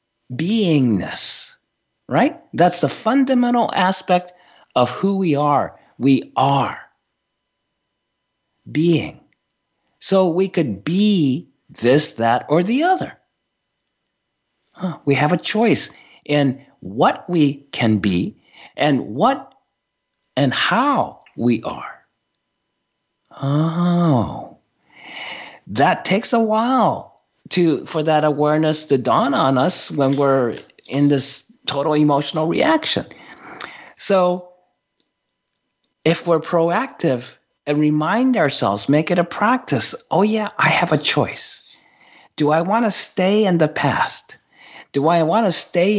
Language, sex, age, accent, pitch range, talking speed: English, male, 50-69, American, 140-190 Hz, 115 wpm